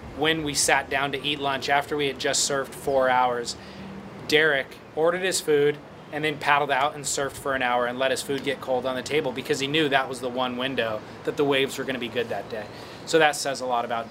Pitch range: 130-155 Hz